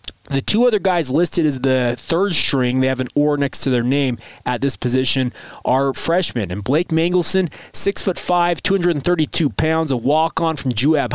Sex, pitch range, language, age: male, 130-165 Hz, English, 20-39